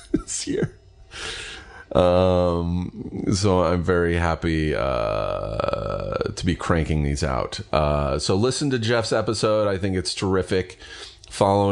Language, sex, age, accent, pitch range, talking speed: English, male, 30-49, American, 85-100 Hz, 125 wpm